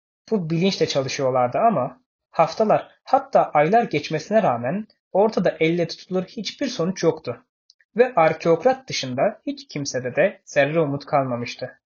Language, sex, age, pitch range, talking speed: Turkish, male, 20-39, 135-180 Hz, 120 wpm